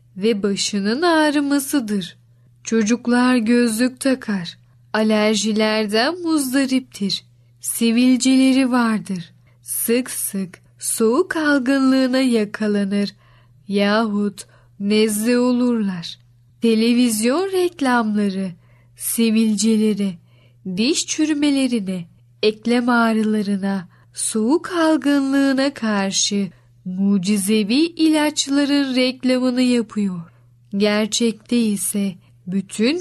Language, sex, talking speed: Turkish, female, 65 wpm